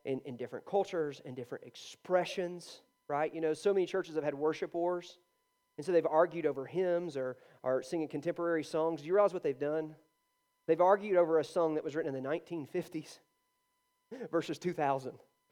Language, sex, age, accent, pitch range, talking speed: English, male, 30-49, American, 150-225 Hz, 180 wpm